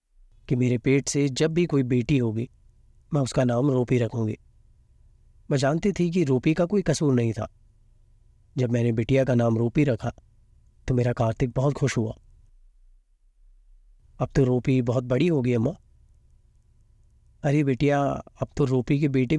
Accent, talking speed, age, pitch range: native, 160 wpm, 30-49, 110-140 Hz